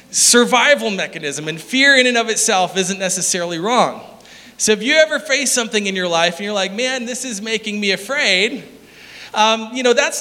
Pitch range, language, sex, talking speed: 210-280 Hz, English, male, 195 wpm